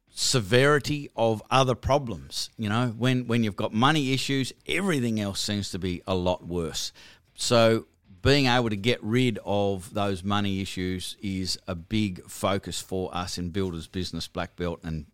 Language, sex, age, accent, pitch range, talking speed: English, male, 50-69, Australian, 95-115 Hz, 165 wpm